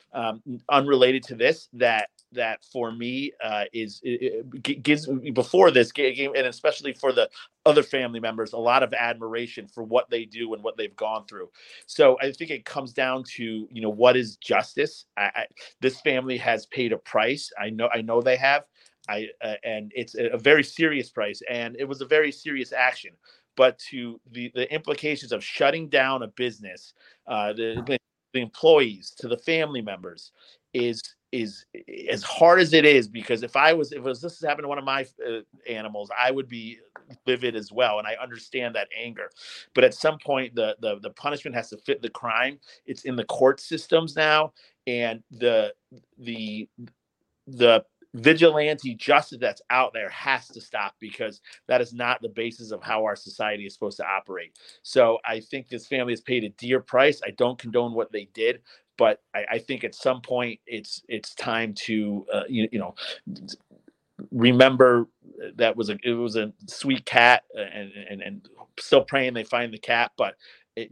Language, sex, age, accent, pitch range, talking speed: English, male, 40-59, American, 115-150 Hz, 190 wpm